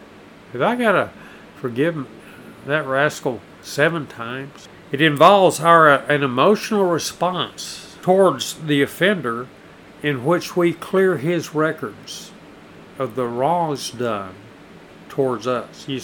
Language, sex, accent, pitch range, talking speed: English, male, American, 125-155 Hz, 125 wpm